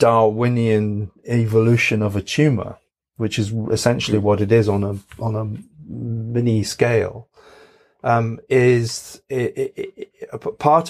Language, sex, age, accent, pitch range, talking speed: English, male, 40-59, British, 100-120 Hz, 140 wpm